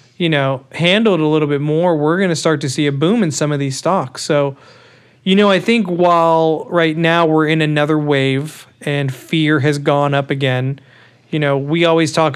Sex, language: male, English